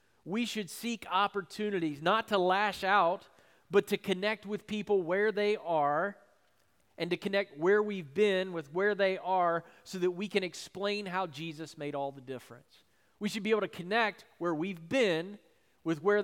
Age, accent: 40-59, American